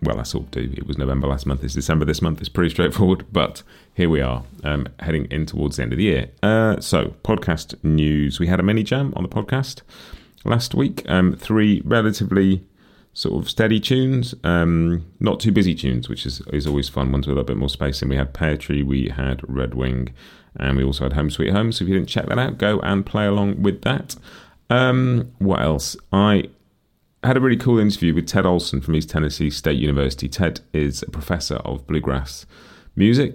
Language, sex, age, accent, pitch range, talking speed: English, male, 30-49, British, 70-95 Hz, 215 wpm